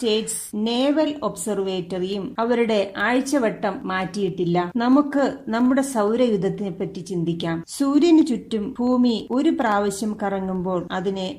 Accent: native